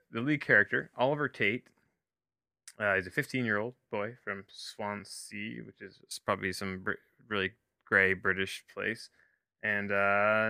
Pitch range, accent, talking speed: 95-115 Hz, American, 125 wpm